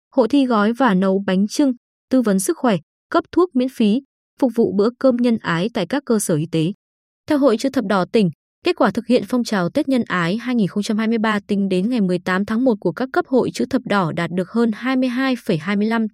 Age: 20-39